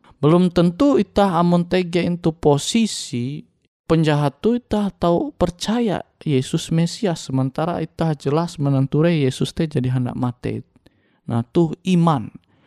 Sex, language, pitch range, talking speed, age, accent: male, Indonesian, 120-160 Hz, 120 wpm, 20-39, native